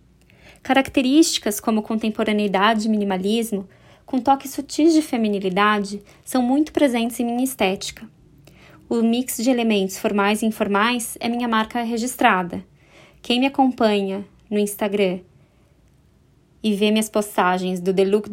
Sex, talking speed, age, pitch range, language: female, 125 wpm, 20-39, 205-255 Hz, Portuguese